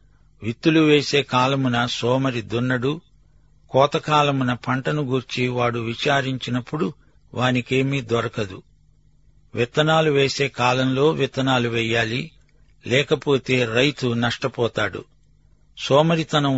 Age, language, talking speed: 50-69, Telugu, 75 wpm